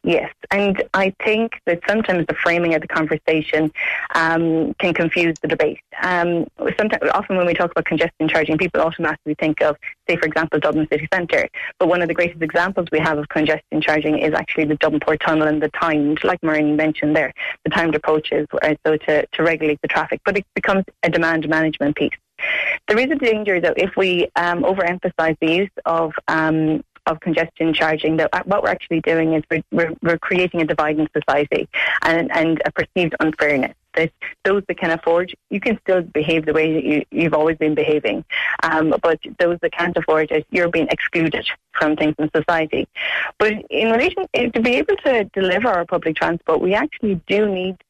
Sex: female